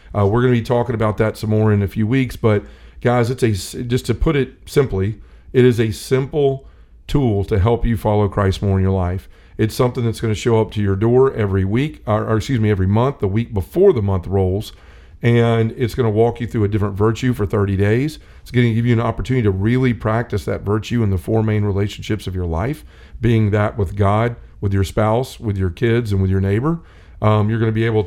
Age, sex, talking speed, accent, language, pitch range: 40-59, male, 245 wpm, American, English, 100-120 Hz